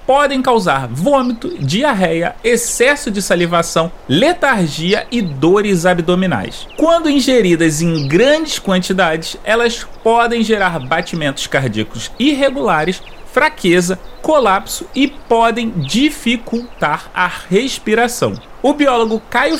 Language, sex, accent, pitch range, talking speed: Portuguese, male, Brazilian, 175-245 Hz, 100 wpm